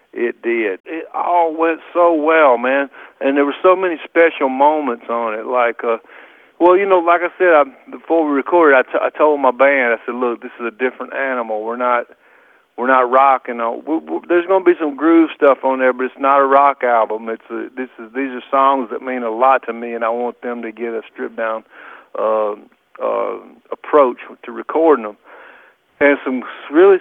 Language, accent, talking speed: English, American, 215 wpm